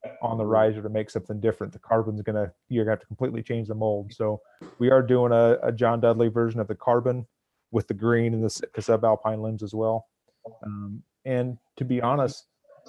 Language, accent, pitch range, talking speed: English, American, 110-130 Hz, 205 wpm